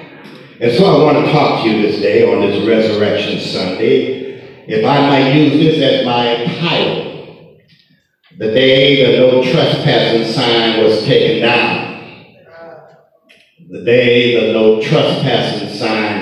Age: 50-69